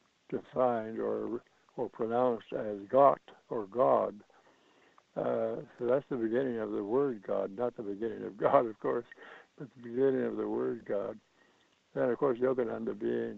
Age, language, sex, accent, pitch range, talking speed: 60-79, English, male, American, 105-125 Hz, 165 wpm